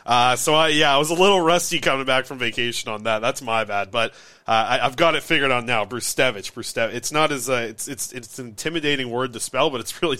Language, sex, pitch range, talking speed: English, male, 115-140 Hz, 260 wpm